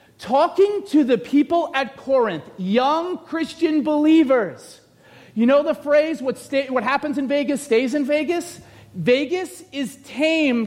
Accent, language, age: American, English, 40-59